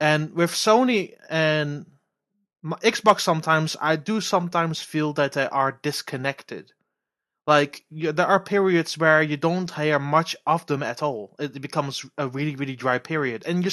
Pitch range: 140-170 Hz